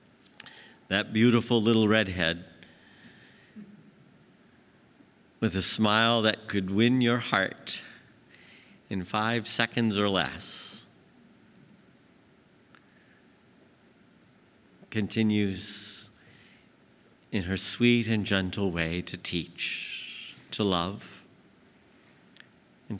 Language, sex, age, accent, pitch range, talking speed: English, male, 50-69, American, 100-125 Hz, 75 wpm